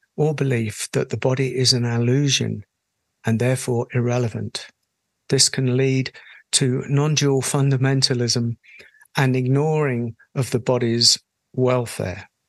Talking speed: 110 wpm